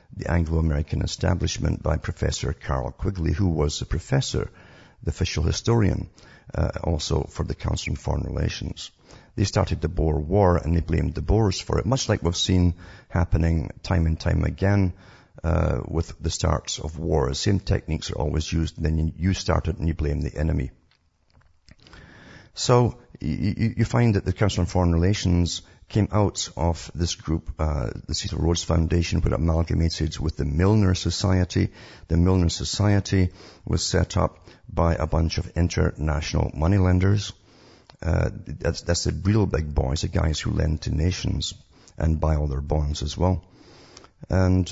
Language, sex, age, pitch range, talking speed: English, male, 50-69, 80-100 Hz, 160 wpm